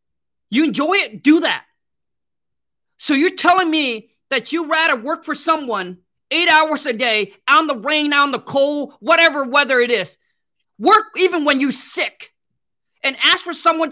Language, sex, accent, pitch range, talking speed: English, male, American, 210-295 Hz, 165 wpm